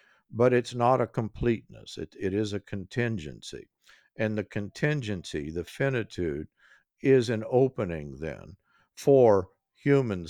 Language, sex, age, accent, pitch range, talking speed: English, male, 60-79, American, 95-130 Hz, 120 wpm